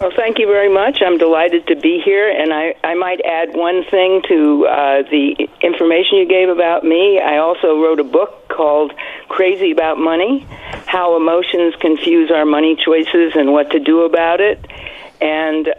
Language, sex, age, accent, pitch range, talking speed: English, female, 50-69, American, 150-175 Hz, 180 wpm